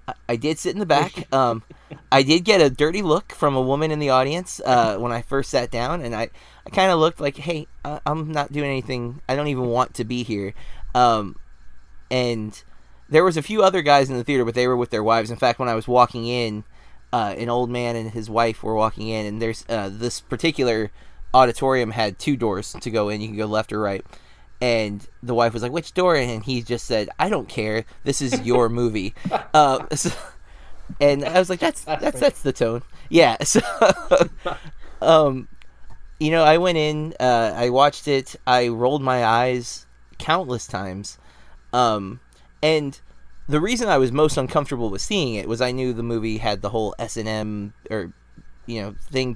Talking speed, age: 205 wpm, 20-39